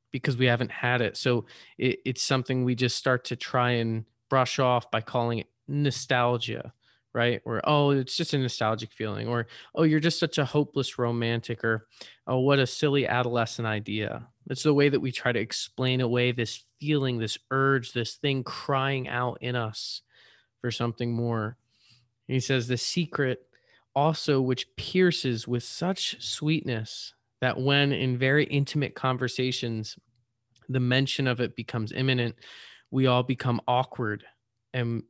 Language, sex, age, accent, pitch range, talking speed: English, male, 20-39, American, 120-135 Hz, 155 wpm